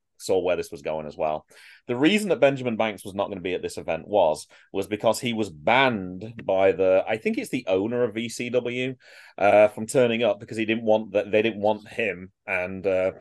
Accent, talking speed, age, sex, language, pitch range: British, 225 wpm, 30-49, male, English, 95-120 Hz